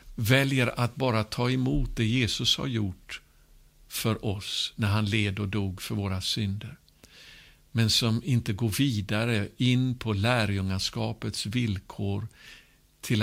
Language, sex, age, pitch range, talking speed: Swedish, male, 60-79, 100-130 Hz, 130 wpm